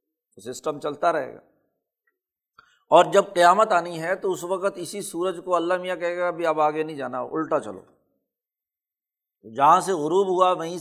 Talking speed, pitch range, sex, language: 170 wpm, 165-210 Hz, male, Urdu